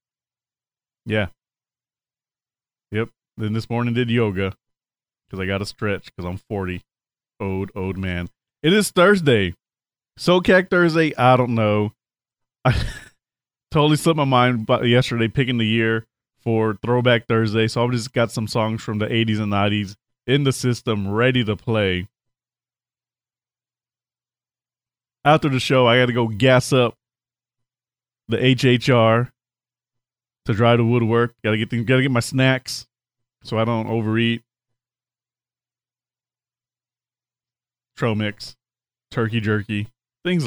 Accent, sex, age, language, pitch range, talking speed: American, male, 30-49, English, 110-125 Hz, 125 wpm